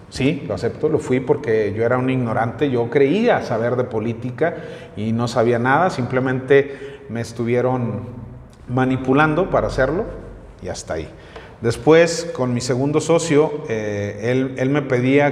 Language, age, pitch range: Spanish, 40-59, 120-160 Hz